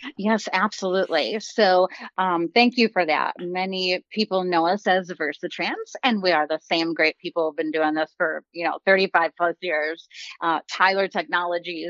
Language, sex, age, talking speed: English, female, 30-49, 175 wpm